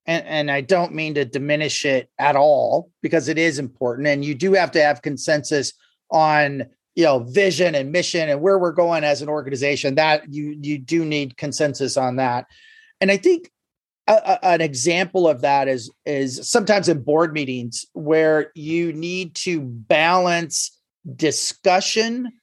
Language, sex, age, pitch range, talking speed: English, male, 30-49, 150-185 Hz, 170 wpm